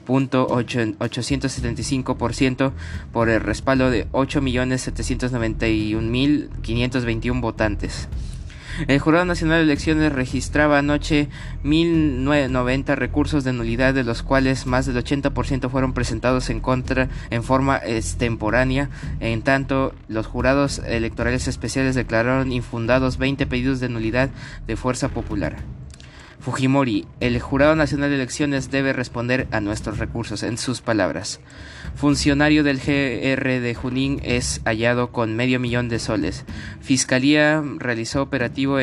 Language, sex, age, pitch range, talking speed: Spanish, male, 20-39, 115-135 Hz, 115 wpm